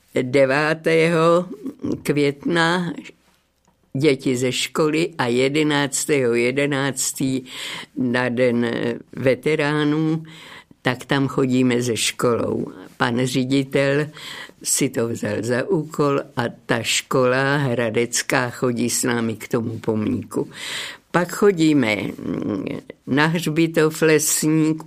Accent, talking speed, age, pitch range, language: native, 90 wpm, 50-69, 125-155 Hz, Czech